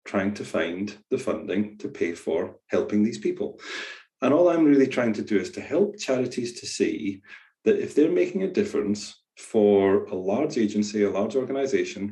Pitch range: 100-120 Hz